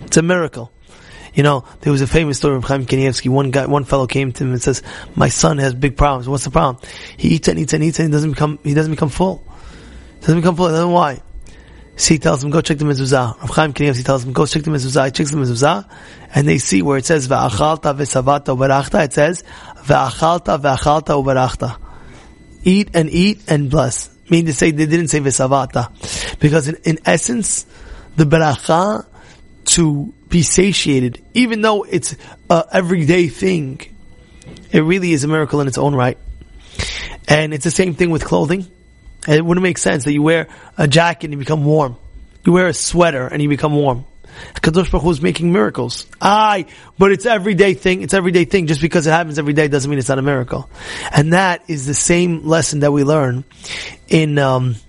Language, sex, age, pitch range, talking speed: English, male, 20-39, 135-170 Hz, 200 wpm